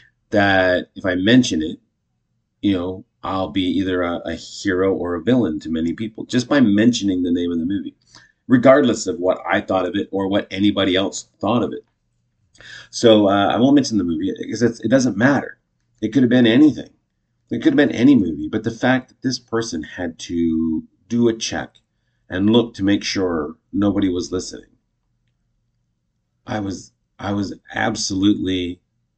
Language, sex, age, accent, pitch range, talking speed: English, male, 30-49, American, 90-120 Hz, 175 wpm